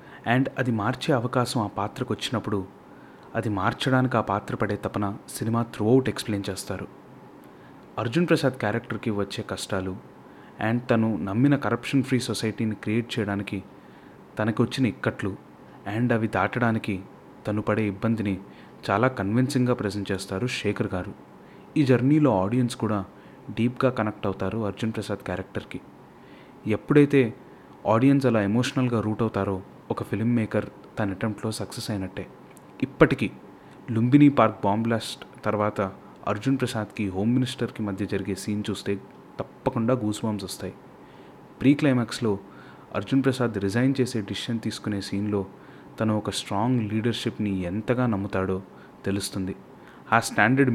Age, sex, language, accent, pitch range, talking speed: 30-49, male, Telugu, native, 100-125 Hz, 120 wpm